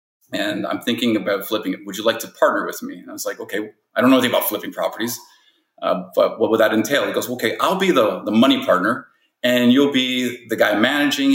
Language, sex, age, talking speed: English, male, 30-49, 245 wpm